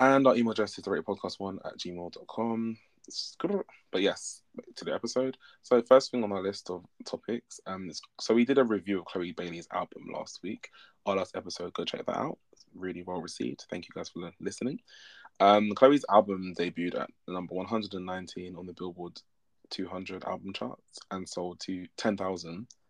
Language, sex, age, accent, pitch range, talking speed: English, male, 20-39, British, 90-110 Hz, 185 wpm